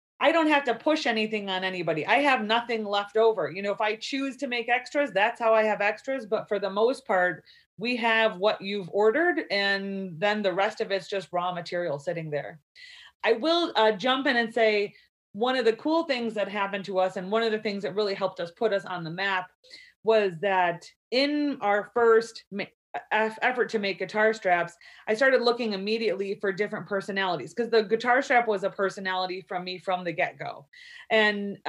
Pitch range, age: 190-235 Hz, 30-49